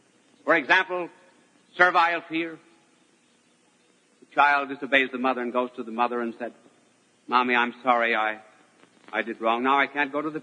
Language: English